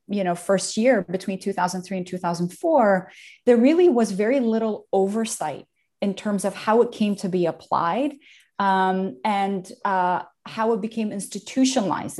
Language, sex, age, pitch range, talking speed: English, female, 30-49, 180-230 Hz, 150 wpm